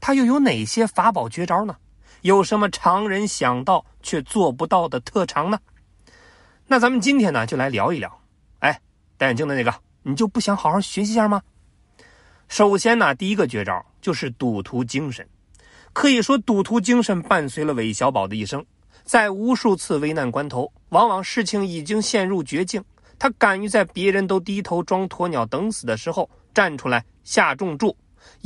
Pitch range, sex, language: 155-225 Hz, male, Chinese